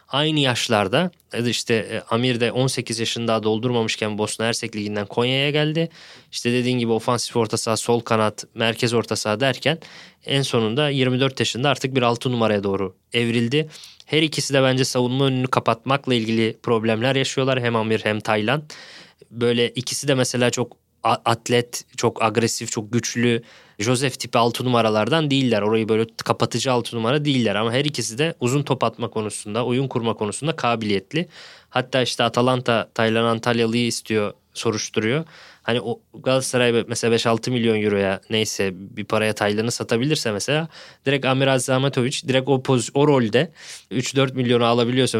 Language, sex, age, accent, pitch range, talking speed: Turkish, male, 20-39, native, 115-130 Hz, 150 wpm